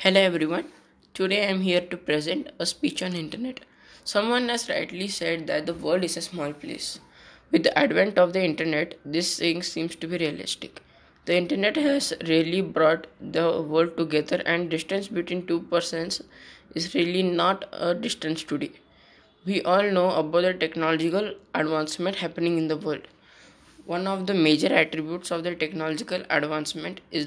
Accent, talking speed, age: Indian, 165 wpm, 20-39